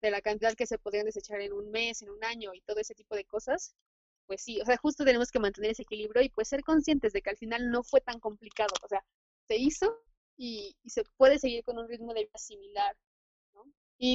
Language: Spanish